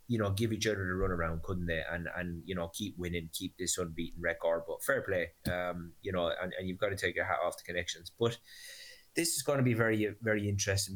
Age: 20-39